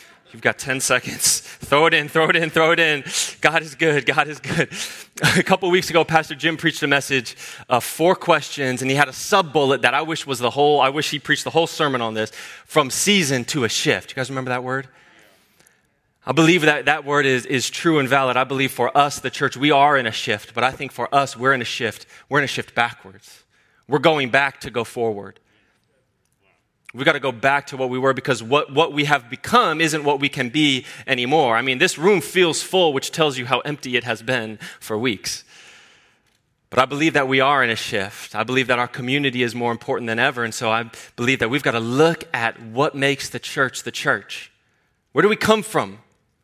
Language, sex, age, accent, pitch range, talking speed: English, male, 20-39, American, 125-155 Hz, 235 wpm